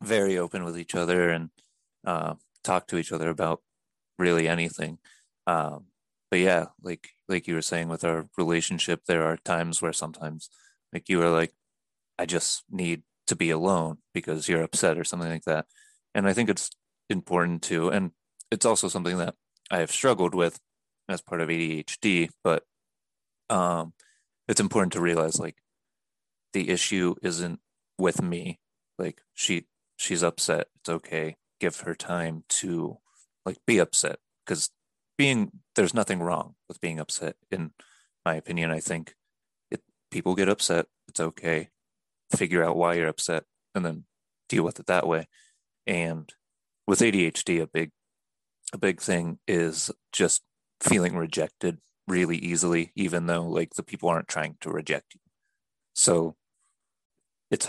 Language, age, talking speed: English, 30-49, 155 wpm